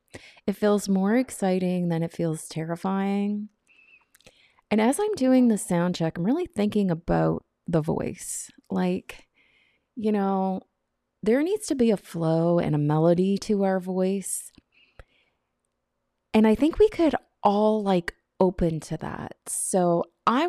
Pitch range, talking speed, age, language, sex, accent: 175-225 Hz, 140 wpm, 30-49, English, female, American